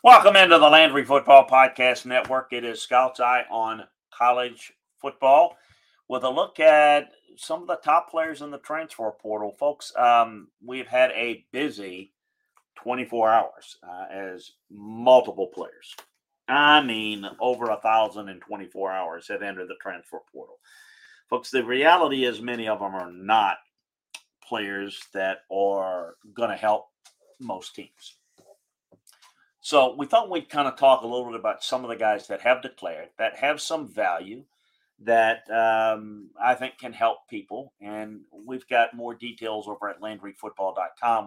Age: 50-69